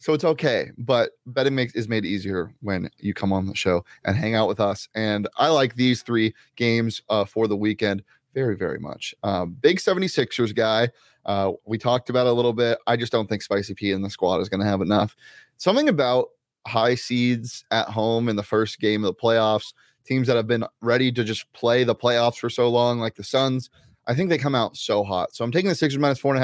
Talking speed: 235 wpm